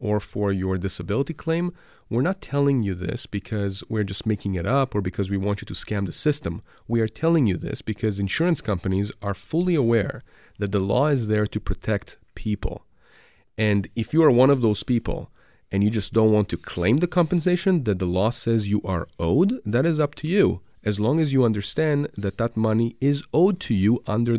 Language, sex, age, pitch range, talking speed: English, male, 40-59, 100-140 Hz, 210 wpm